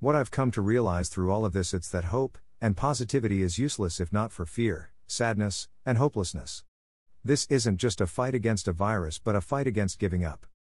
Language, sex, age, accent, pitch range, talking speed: English, male, 50-69, American, 90-115 Hz, 205 wpm